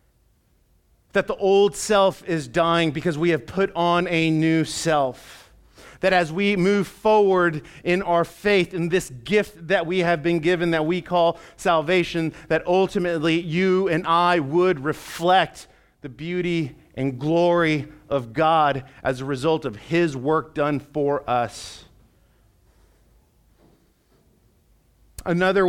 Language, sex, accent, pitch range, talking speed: English, male, American, 170-220 Hz, 135 wpm